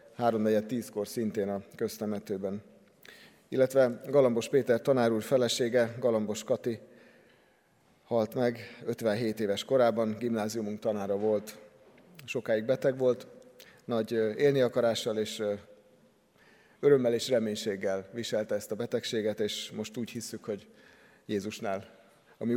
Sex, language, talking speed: male, Hungarian, 110 wpm